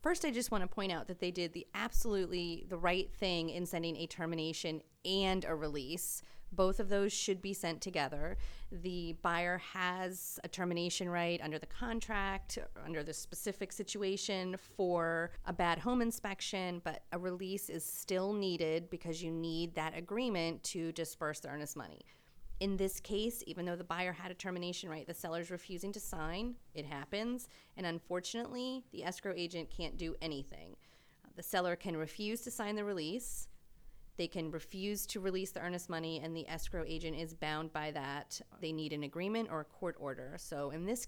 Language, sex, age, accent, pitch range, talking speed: English, female, 30-49, American, 160-195 Hz, 180 wpm